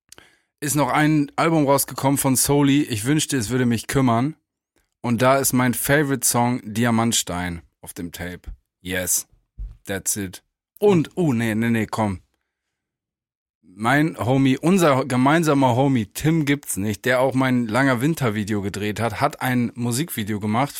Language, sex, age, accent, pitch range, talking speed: German, male, 20-39, German, 110-140 Hz, 145 wpm